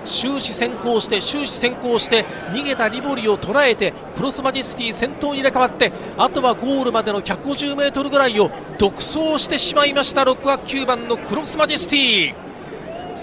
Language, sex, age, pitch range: Japanese, male, 40-59, 205-270 Hz